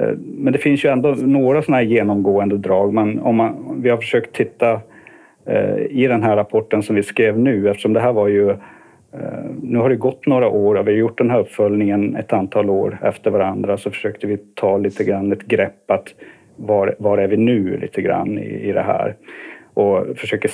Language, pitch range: Swedish, 100-120 Hz